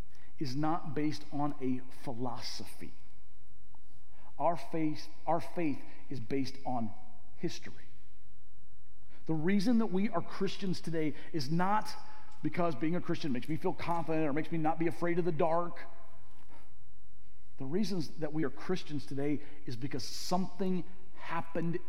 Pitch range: 125-170 Hz